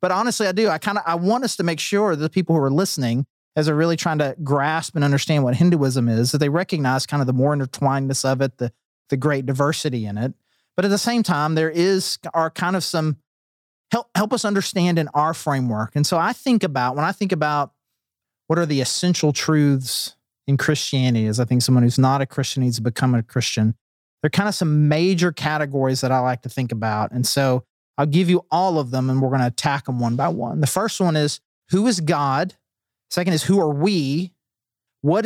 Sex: male